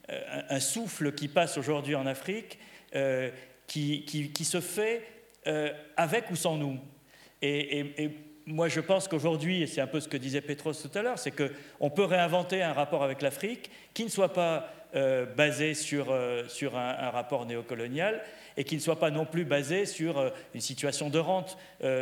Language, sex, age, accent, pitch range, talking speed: French, male, 50-69, French, 135-170 Hz, 195 wpm